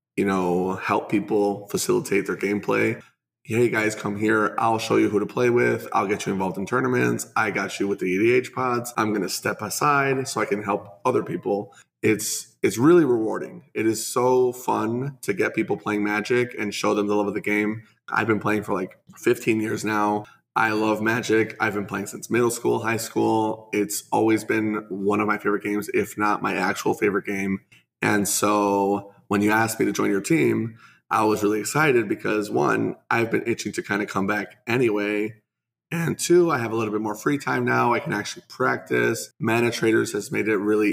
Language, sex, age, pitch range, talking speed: English, male, 20-39, 100-110 Hz, 210 wpm